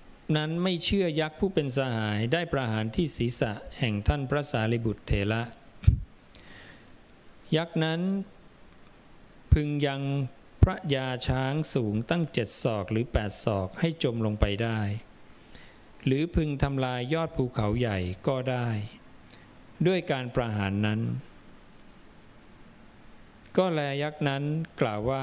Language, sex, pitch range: English, male, 105-140 Hz